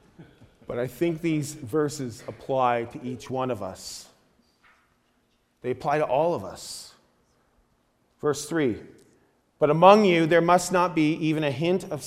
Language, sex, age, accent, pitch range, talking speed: English, male, 30-49, American, 150-185 Hz, 150 wpm